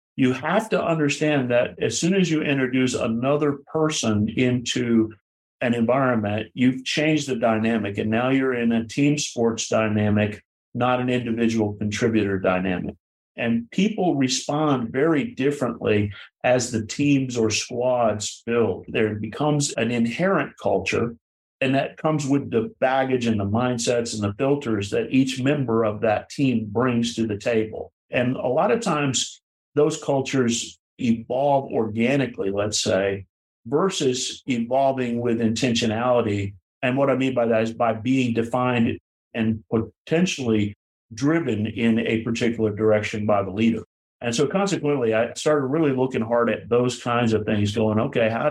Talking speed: 150 wpm